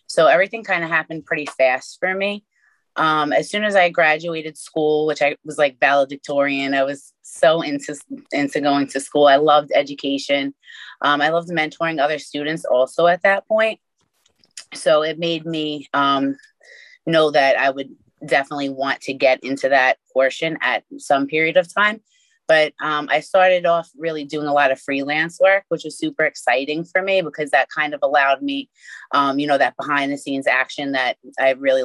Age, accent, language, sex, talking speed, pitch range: 20-39, American, English, female, 185 wpm, 140-170 Hz